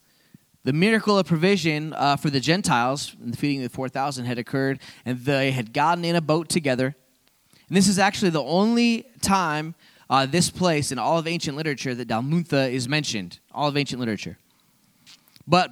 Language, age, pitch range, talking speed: English, 20-39, 120-160 Hz, 185 wpm